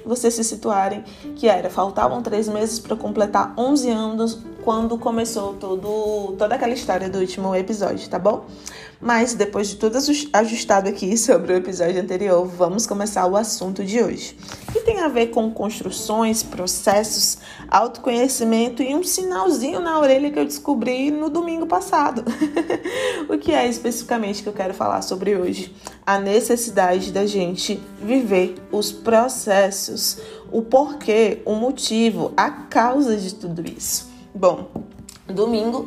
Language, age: Portuguese, 20-39